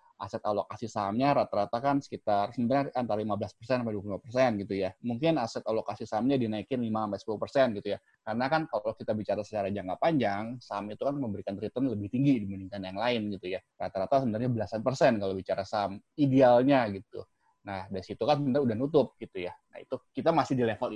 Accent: Indonesian